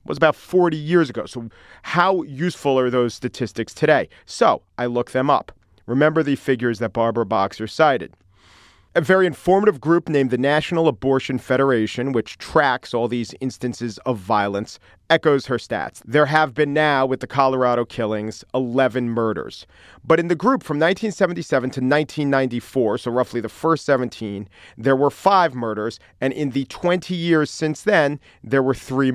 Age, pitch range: 40-59, 115-150 Hz